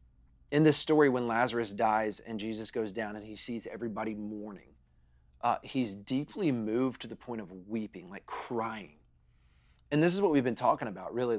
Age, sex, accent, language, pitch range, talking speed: 30-49, male, American, English, 105-145 Hz, 185 wpm